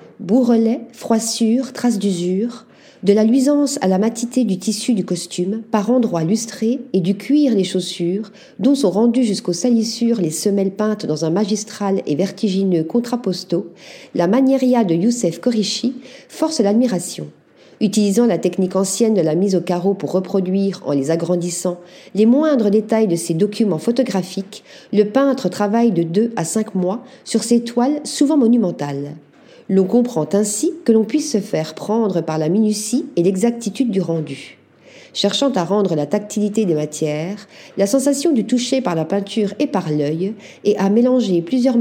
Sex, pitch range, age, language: female, 180-240 Hz, 40-59, Japanese